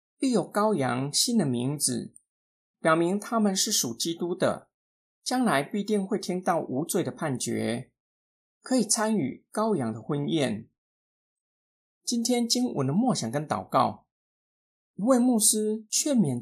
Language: Chinese